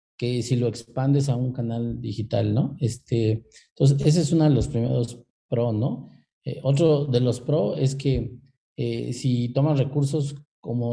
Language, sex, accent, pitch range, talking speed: Spanish, male, Mexican, 120-145 Hz, 170 wpm